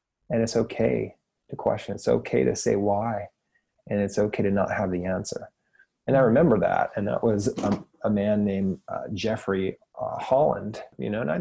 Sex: male